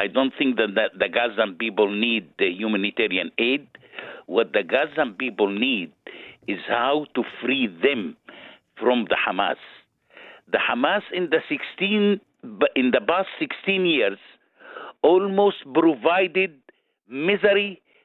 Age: 60-79